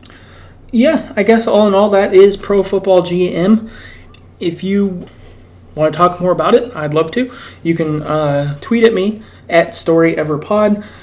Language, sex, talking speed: English, male, 165 wpm